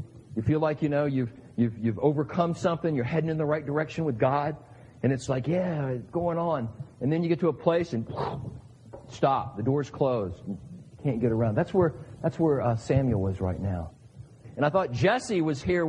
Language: English